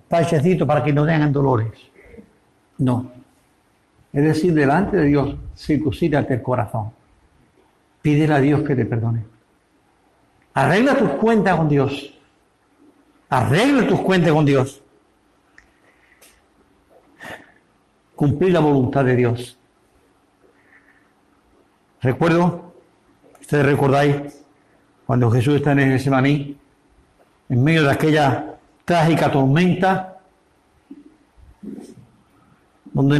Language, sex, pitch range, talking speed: Spanish, male, 125-150 Hz, 90 wpm